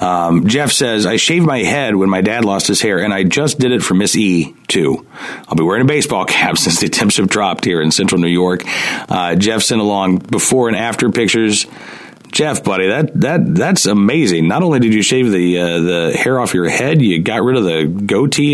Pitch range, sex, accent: 80-115 Hz, male, American